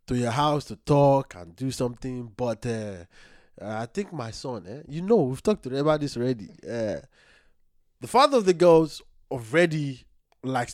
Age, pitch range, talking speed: 20-39, 135-215 Hz, 170 wpm